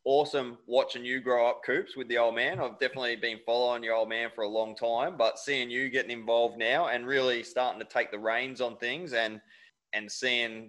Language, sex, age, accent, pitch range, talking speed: English, male, 20-39, Australian, 105-130 Hz, 220 wpm